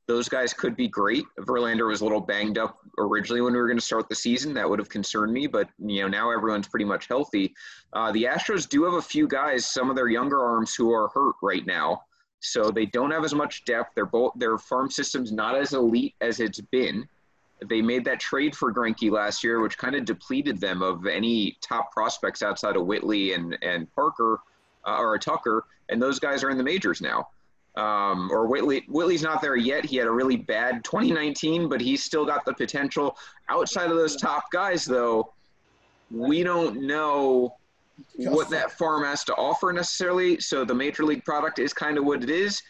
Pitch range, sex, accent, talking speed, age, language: 115-160 Hz, male, American, 205 wpm, 30-49, English